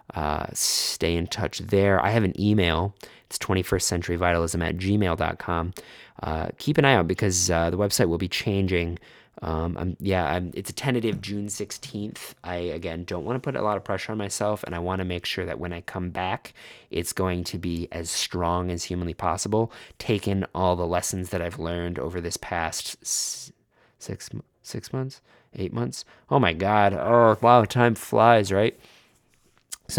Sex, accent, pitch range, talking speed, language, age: male, American, 85-105 Hz, 180 wpm, English, 20-39